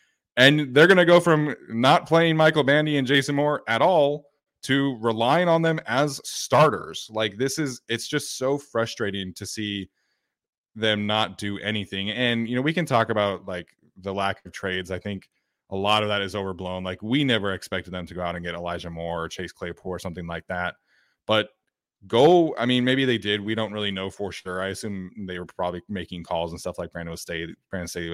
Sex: male